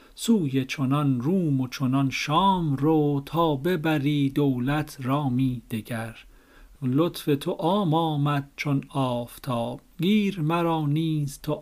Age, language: 50-69, Persian